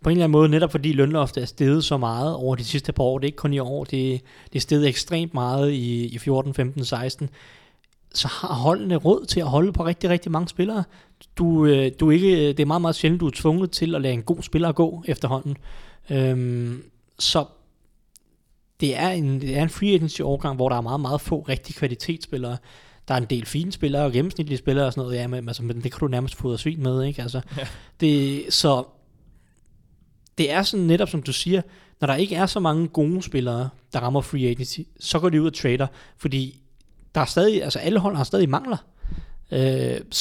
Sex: male